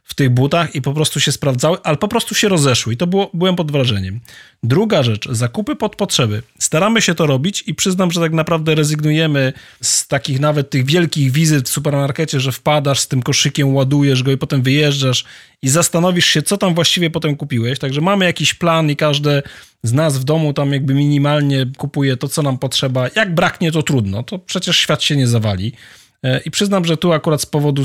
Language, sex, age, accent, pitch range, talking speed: Polish, male, 40-59, native, 130-160 Hz, 205 wpm